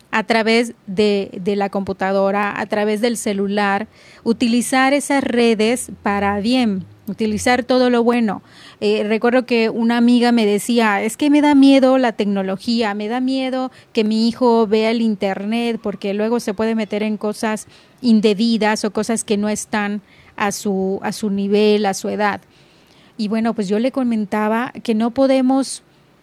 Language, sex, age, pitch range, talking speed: Spanish, female, 30-49, 205-235 Hz, 165 wpm